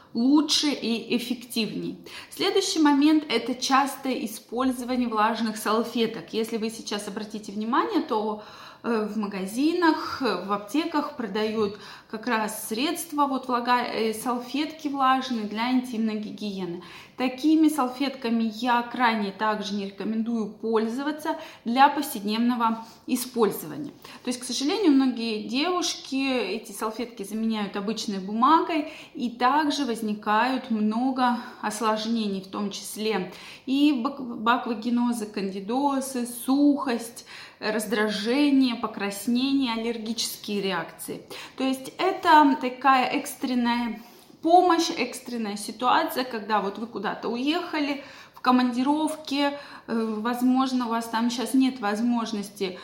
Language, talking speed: Russian, 100 wpm